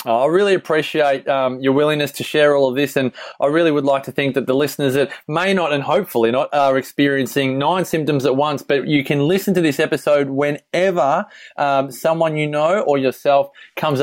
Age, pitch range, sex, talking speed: 20-39, 130-145 Hz, male, 205 wpm